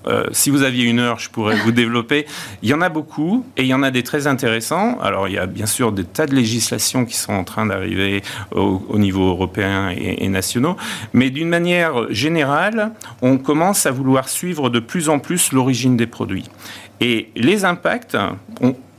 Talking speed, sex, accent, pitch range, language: 205 wpm, male, French, 115-160 Hz, French